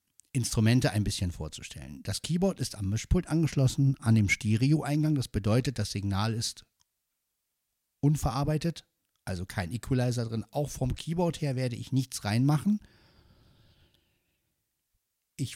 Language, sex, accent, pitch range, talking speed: German, male, German, 105-135 Hz, 125 wpm